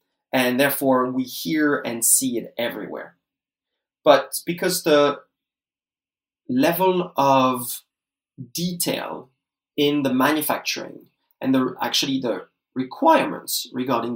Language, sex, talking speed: English, male, 100 wpm